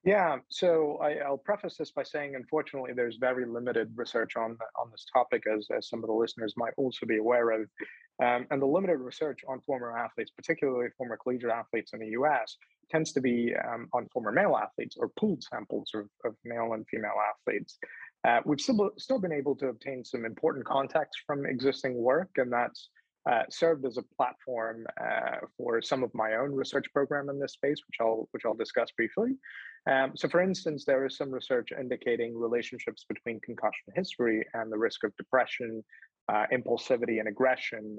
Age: 30-49